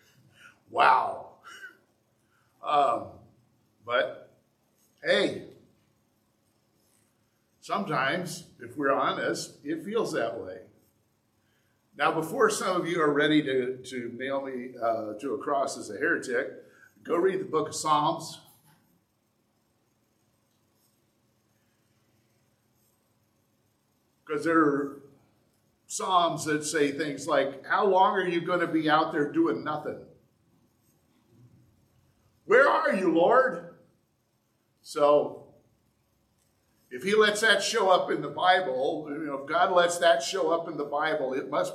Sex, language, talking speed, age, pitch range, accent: male, English, 120 wpm, 50-69, 110-155 Hz, American